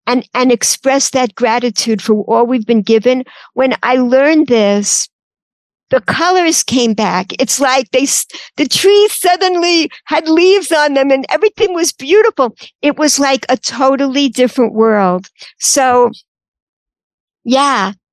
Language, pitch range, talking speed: English, 225-285 Hz, 135 wpm